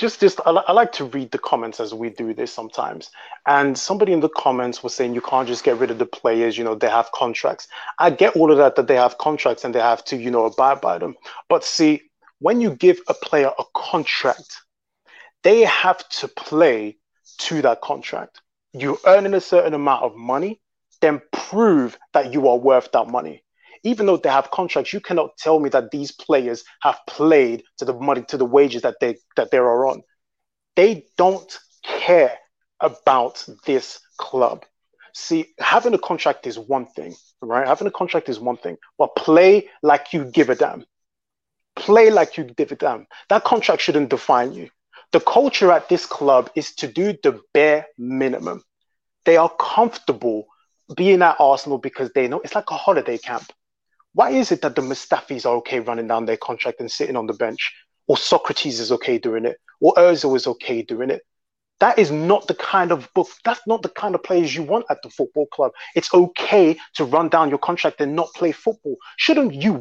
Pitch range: 140-235 Hz